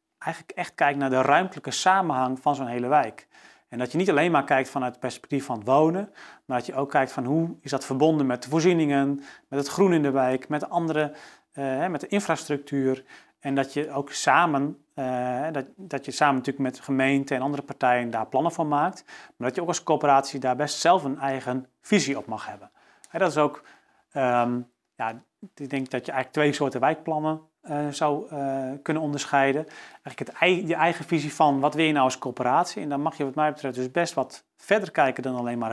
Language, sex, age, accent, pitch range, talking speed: Dutch, male, 40-59, Dutch, 130-150 Hz, 220 wpm